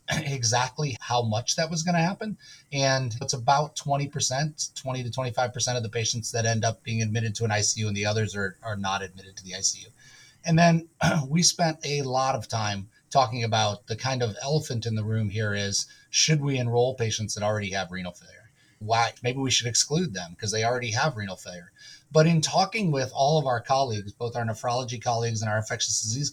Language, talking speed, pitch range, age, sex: English, 205 wpm, 110-145 Hz, 30-49, male